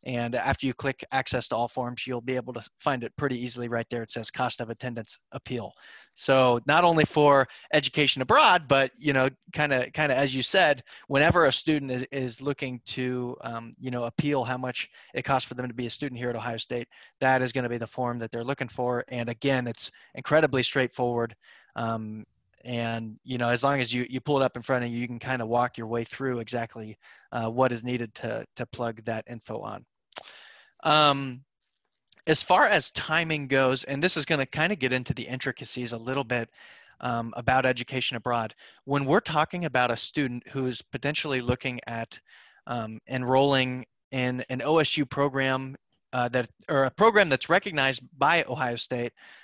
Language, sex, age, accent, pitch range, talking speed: English, male, 20-39, American, 120-135 Hz, 200 wpm